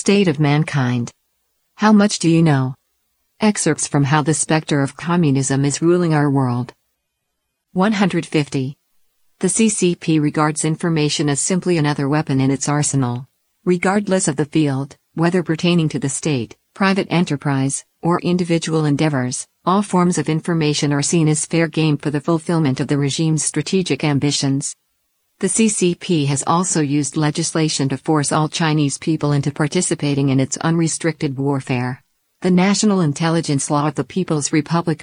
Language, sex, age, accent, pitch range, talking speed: English, female, 50-69, American, 140-170 Hz, 150 wpm